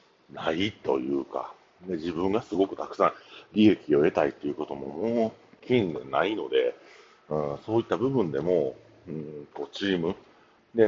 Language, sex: Japanese, male